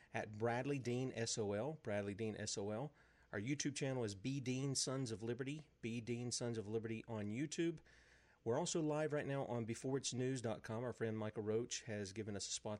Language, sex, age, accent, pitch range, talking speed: English, male, 40-59, American, 110-135 Hz, 185 wpm